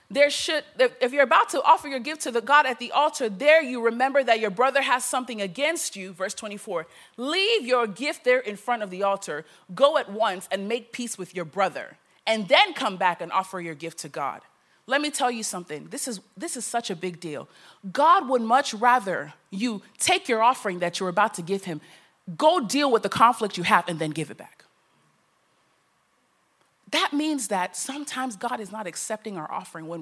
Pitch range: 195-285 Hz